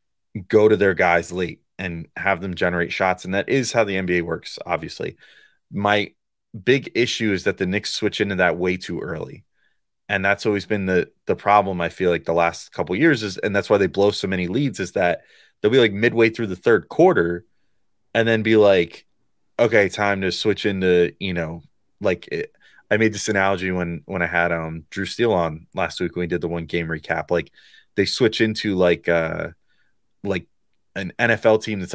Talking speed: 205 wpm